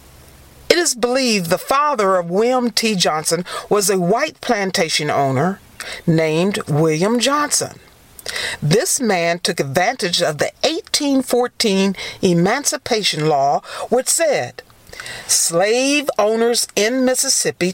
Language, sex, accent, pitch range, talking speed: English, female, American, 180-270 Hz, 110 wpm